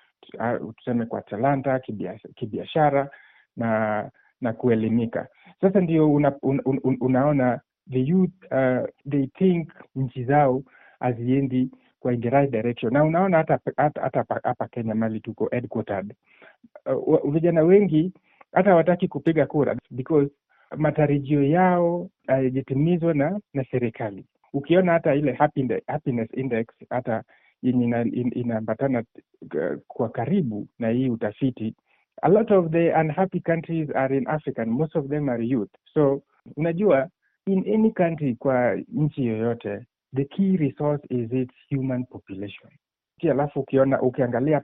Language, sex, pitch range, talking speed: Swahili, male, 125-160 Hz, 135 wpm